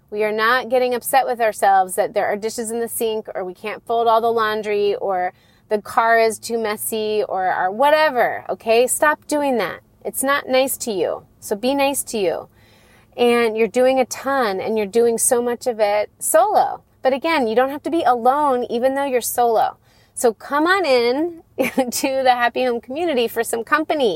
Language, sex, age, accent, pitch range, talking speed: English, female, 30-49, American, 200-255 Hz, 200 wpm